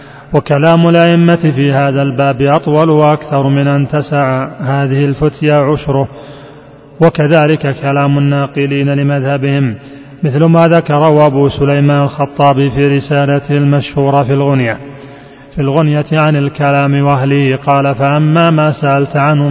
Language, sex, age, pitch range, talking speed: Arabic, male, 30-49, 140-150 Hz, 115 wpm